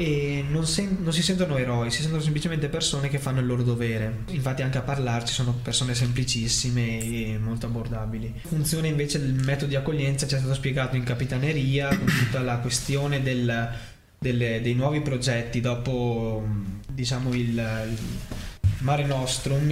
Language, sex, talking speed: Italian, male, 160 wpm